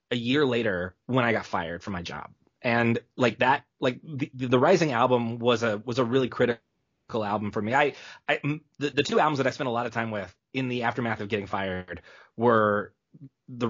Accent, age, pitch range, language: American, 30-49, 110-140 Hz, English